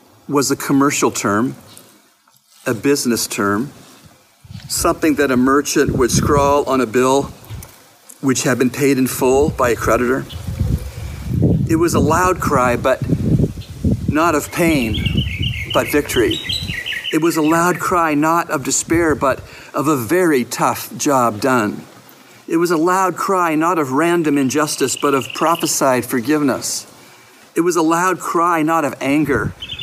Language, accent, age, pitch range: English, American, 50-69, 130-160 Hz